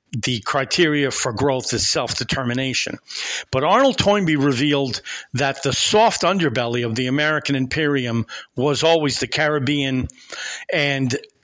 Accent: American